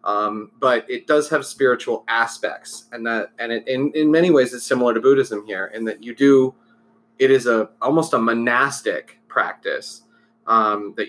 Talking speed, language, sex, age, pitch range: 180 wpm, English, male, 30-49, 115-140 Hz